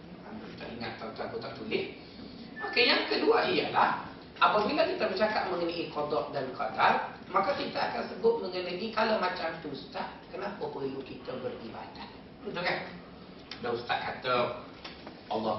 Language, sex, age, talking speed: Malay, male, 40-59, 125 wpm